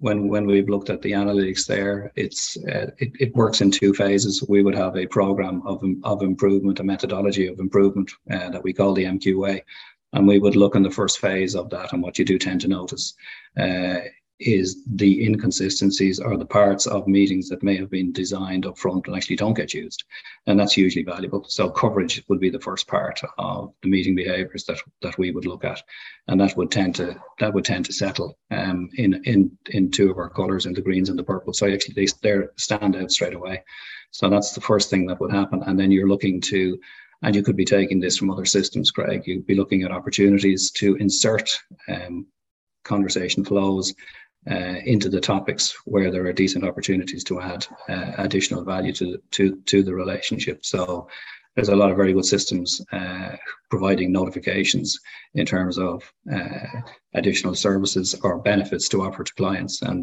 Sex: male